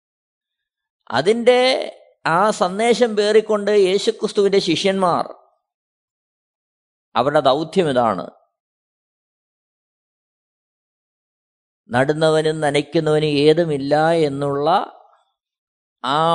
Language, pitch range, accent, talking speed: Malayalam, 140-210 Hz, native, 50 wpm